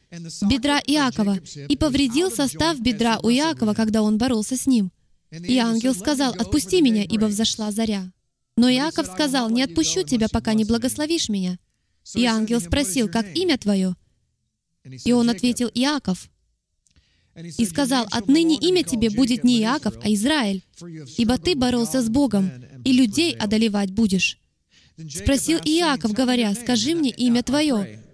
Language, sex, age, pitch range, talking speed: Russian, female, 20-39, 165-270 Hz, 145 wpm